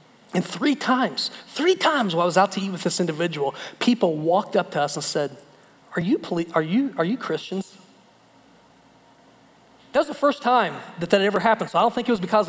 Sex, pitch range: male, 180-250 Hz